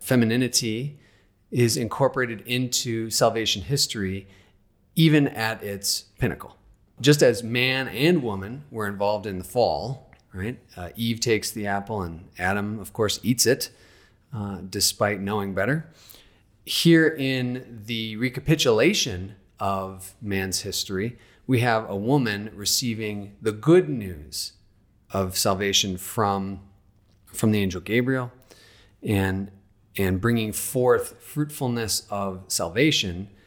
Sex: male